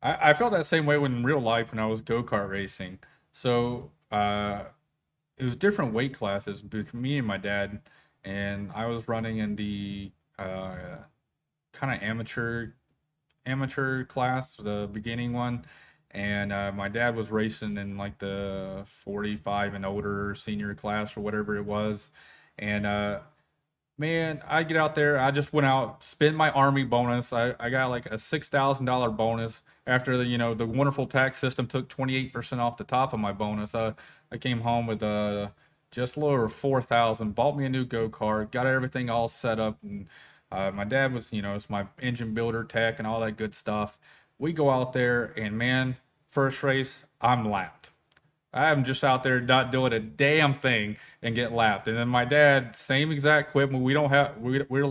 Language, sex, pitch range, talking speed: English, male, 105-135 Hz, 185 wpm